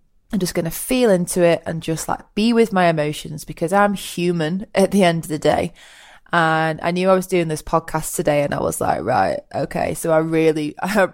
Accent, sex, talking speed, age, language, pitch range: British, female, 225 wpm, 20-39, English, 155-185 Hz